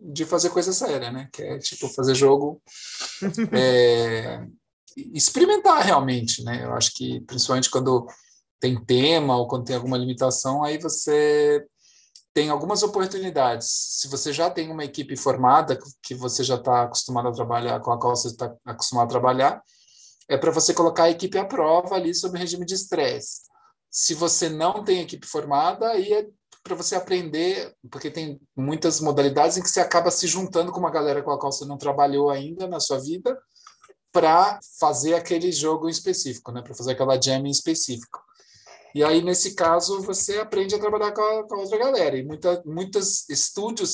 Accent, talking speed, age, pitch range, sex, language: Brazilian, 180 wpm, 20-39, 130-185 Hz, male, Portuguese